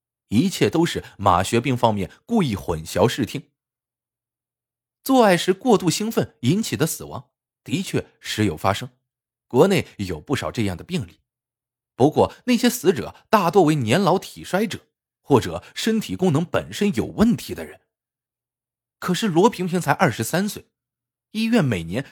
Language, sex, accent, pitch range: Chinese, male, native, 115-180 Hz